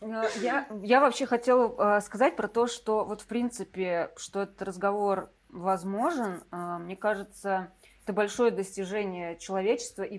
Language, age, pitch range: Russian, 20-39, 195-225 Hz